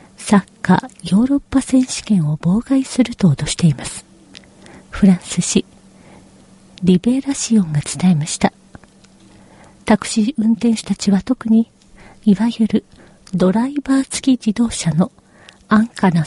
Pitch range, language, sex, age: 185-245 Hz, Korean, female, 40-59